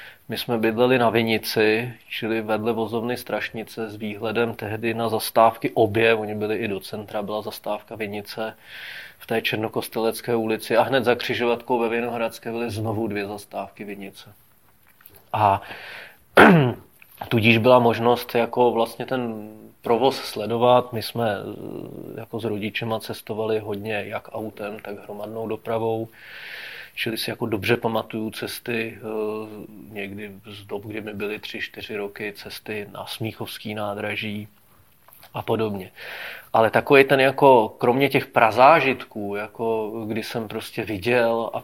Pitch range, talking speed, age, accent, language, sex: 110-115 Hz, 135 wpm, 30-49, native, Czech, male